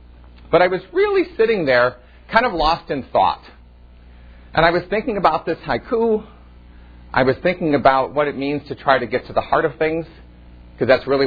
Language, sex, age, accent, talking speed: English, male, 40-59, American, 195 wpm